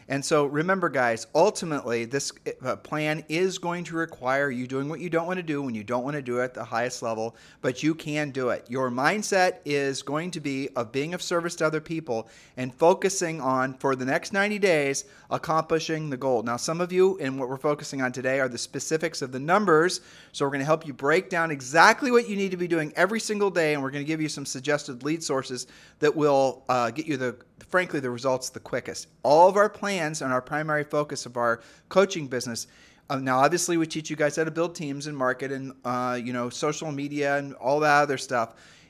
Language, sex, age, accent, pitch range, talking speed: English, male, 40-59, American, 130-165 Hz, 230 wpm